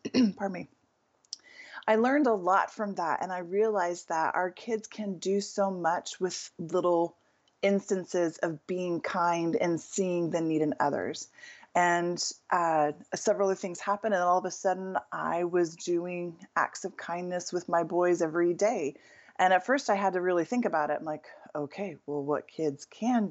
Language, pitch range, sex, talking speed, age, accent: English, 170-200 Hz, female, 180 wpm, 20-39, American